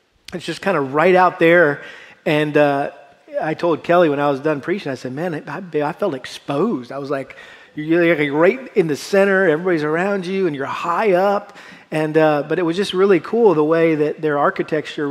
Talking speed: 205 wpm